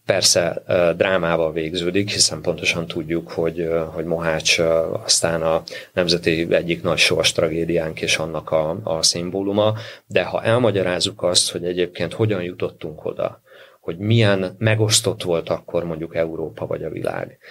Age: 30-49